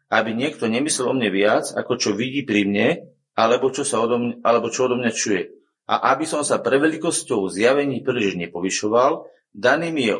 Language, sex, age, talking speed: Slovak, male, 40-59, 165 wpm